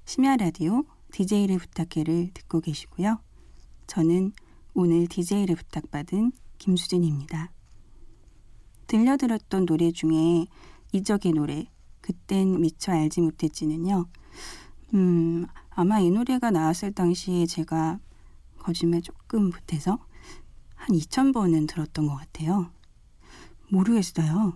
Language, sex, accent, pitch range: Korean, female, native, 160-200 Hz